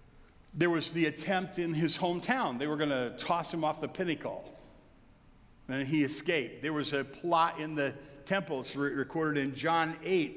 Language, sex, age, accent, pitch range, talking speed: English, male, 50-69, American, 145-195 Hz, 180 wpm